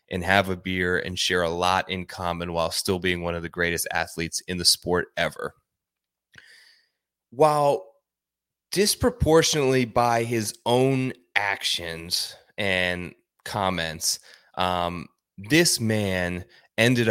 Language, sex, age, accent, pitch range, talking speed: English, male, 20-39, American, 90-130 Hz, 120 wpm